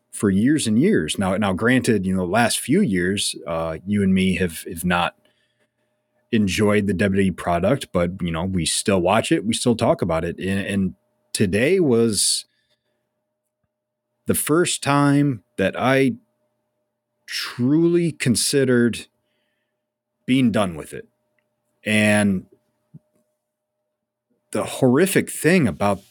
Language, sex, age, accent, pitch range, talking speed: English, male, 30-49, American, 95-120 Hz, 125 wpm